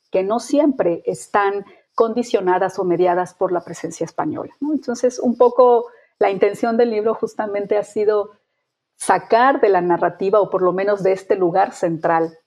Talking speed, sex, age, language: 165 wpm, female, 40-59, Spanish